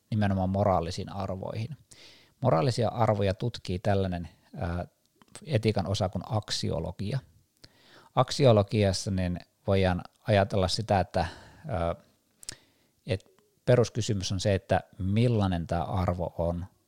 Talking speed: 90 wpm